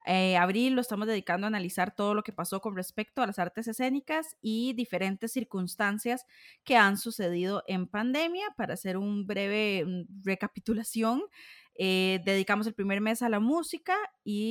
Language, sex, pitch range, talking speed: Spanish, female, 190-260 Hz, 165 wpm